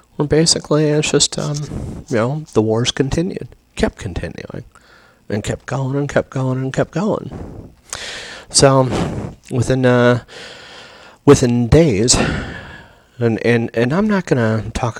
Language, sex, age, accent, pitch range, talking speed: English, male, 40-59, American, 95-125 Hz, 130 wpm